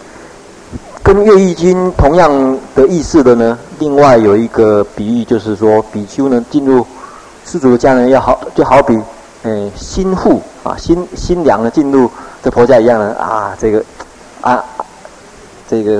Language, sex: Chinese, male